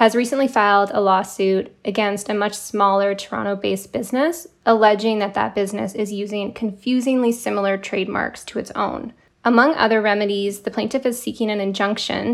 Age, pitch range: 10-29, 195-225 Hz